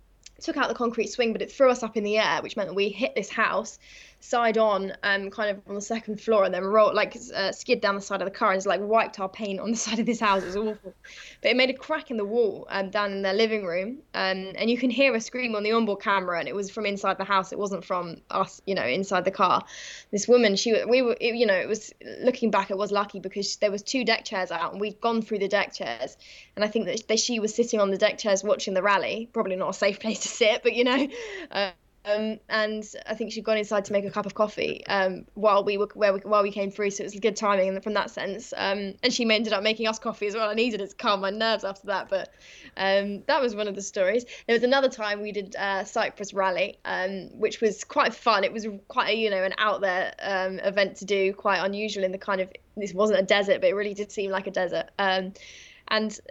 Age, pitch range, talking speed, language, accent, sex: 20-39, 195-225 Hz, 275 wpm, English, British, female